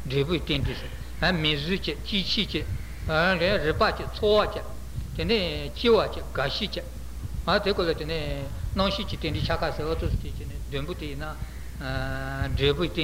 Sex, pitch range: male, 160-220 Hz